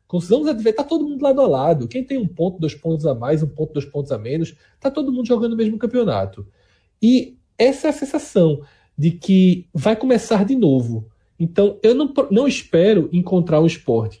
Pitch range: 145-235 Hz